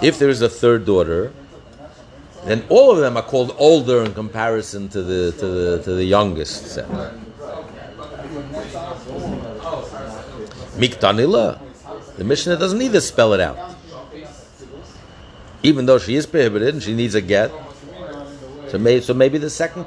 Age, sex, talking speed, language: 60-79, male, 145 wpm, English